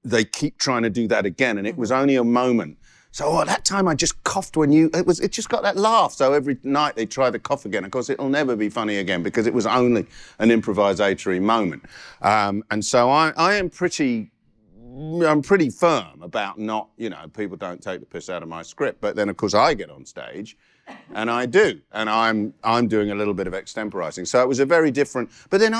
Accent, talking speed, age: British, 235 wpm, 40-59